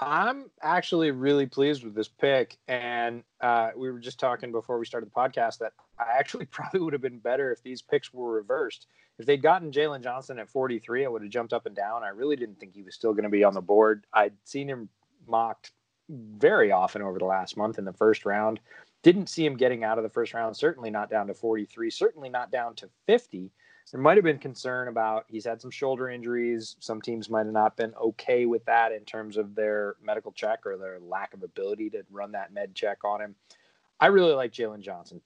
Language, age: English, 20-39